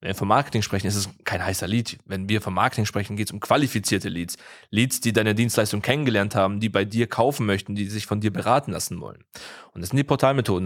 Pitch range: 100-125 Hz